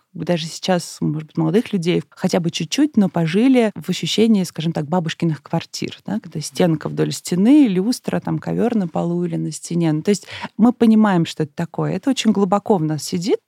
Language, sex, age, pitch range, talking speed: Russian, female, 20-39, 170-215 Hz, 190 wpm